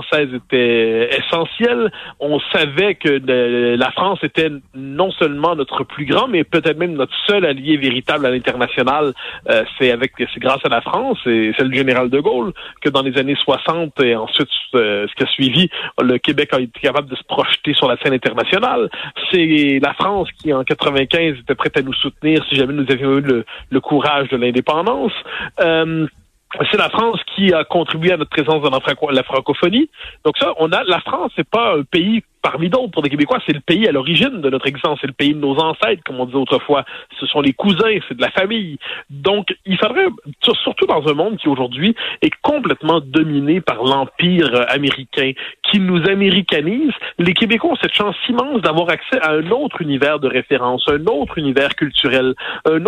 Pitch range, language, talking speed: 135-185 Hz, French, 195 wpm